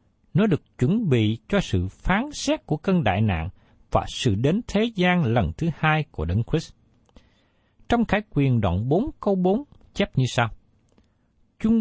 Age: 60-79